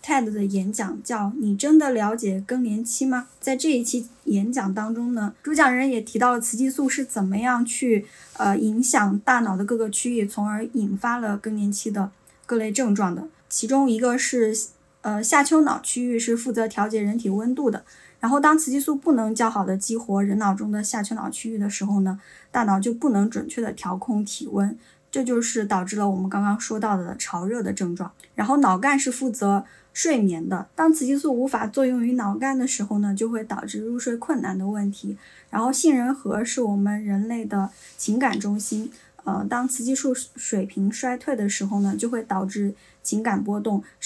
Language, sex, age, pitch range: Chinese, female, 20-39, 200-245 Hz